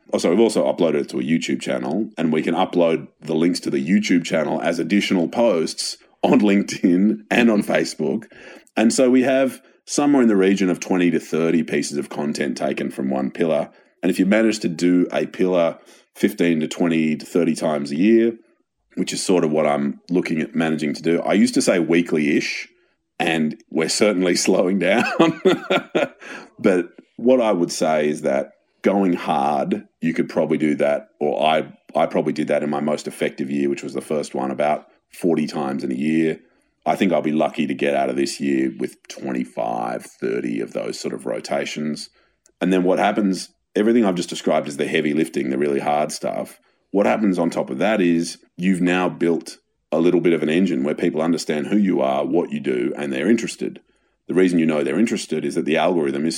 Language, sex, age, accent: English, male, 30-49, Australian